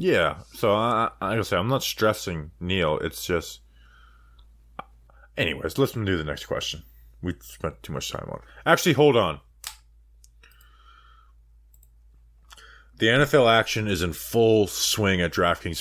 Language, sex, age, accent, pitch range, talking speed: English, male, 30-49, American, 80-115 Hz, 140 wpm